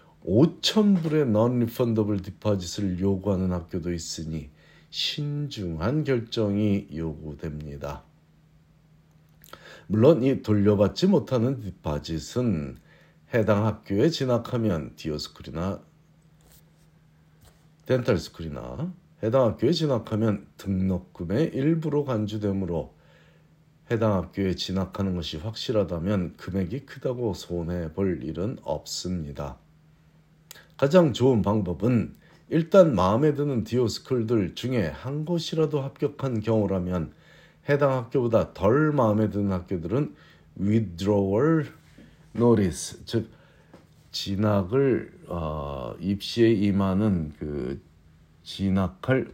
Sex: male